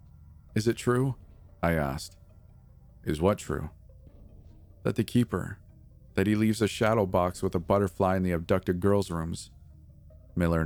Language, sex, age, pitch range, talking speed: English, male, 40-59, 85-105 Hz, 145 wpm